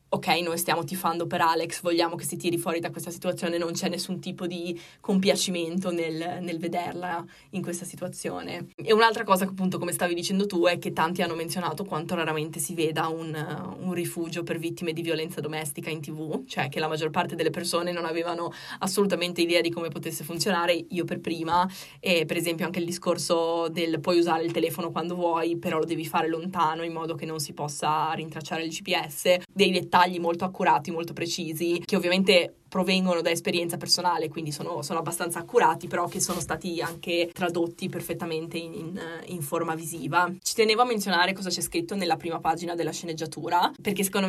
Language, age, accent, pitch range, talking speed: Italian, 20-39, native, 165-180 Hz, 190 wpm